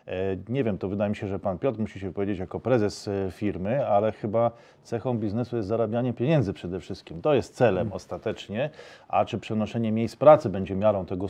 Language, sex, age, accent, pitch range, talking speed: Polish, male, 40-59, native, 100-115 Hz, 190 wpm